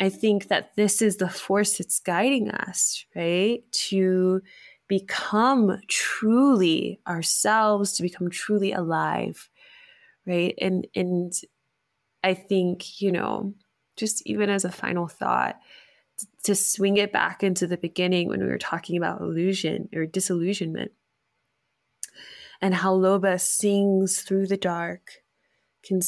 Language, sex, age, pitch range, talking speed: English, female, 20-39, 175-205 Hz, 125 wpm